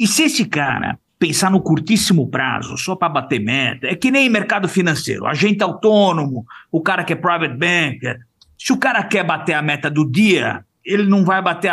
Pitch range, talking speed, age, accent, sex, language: 150-190 Hz, 195 wpm, 50-69, Brazilian, male, Portuguese